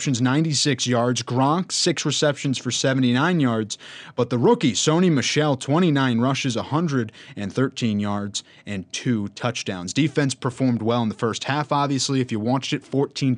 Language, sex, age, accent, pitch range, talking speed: English, male, 20-39, American, 110-135 Hz, 150 wpm